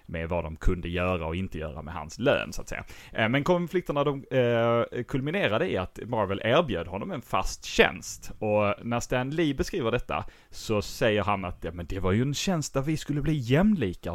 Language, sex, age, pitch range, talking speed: English, male, 30-49, 95-125 Hz, 195 wpm